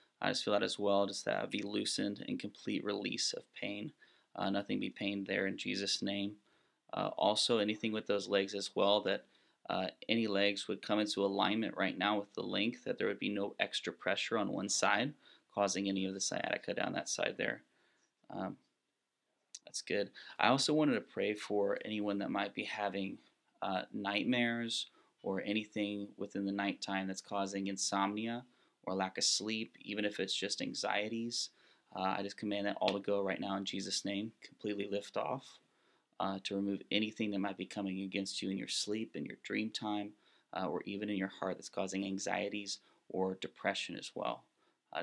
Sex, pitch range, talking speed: male, 100-105 Hz, 190 wpm